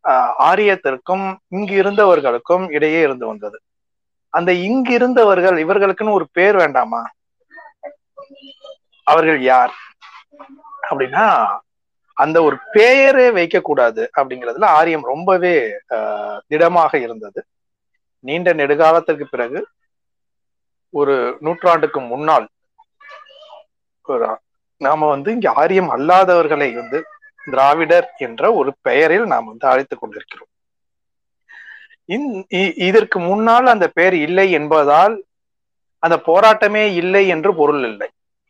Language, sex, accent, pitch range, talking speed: Tamil, male, native, 165-275 Hz, 85 wpm